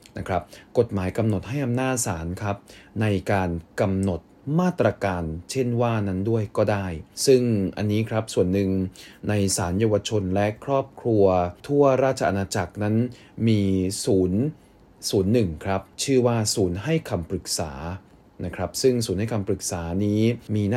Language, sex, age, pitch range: Thai, male, 20-39, 95-115 Hz